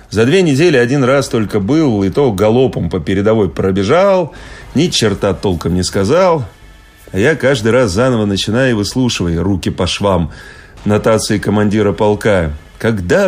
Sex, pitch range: male, 100-150 Hz